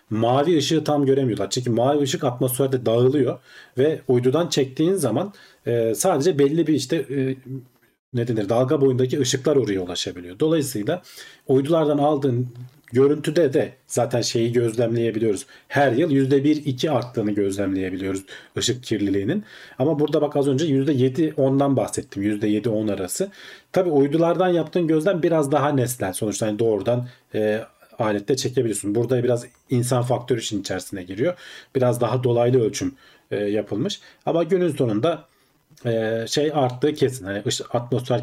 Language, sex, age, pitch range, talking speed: Turkish, male, 40-59, 110-140 Hz, 130 wpm